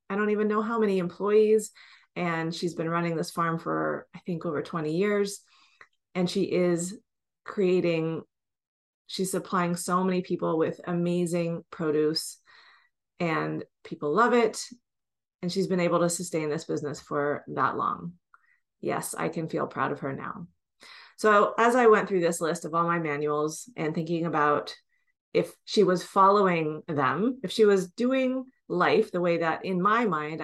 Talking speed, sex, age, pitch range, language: 165 wpm, female, 30-49, 155-200 Hz, English